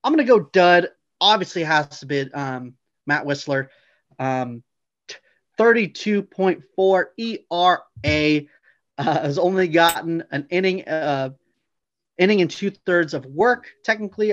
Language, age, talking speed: English, 30-49, 115 wpm